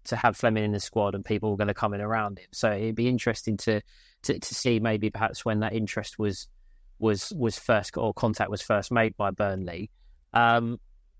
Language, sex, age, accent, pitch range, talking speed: English, male, 20-39, British, 105-115 Hz, 215 wpm